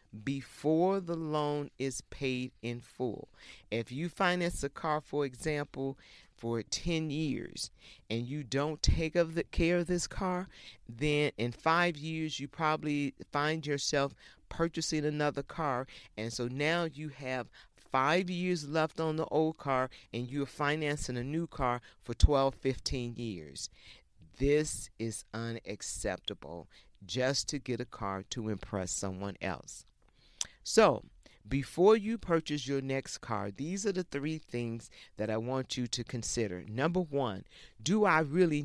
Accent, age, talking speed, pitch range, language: American, 50-69, 145 wpm, 115-155 Hz, English